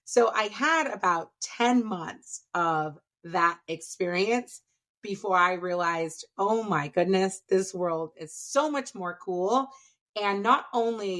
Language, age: English, 30-49